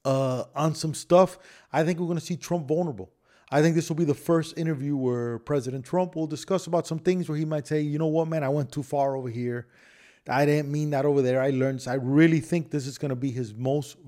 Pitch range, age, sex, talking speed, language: 135-160 Hz, 30-49, male, 245 wpm, English